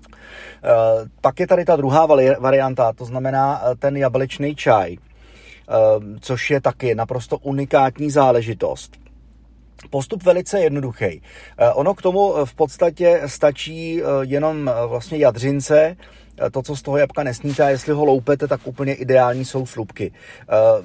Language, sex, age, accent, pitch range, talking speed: Czech, male, 30-49, native, 115-140 Hz, 125 wpm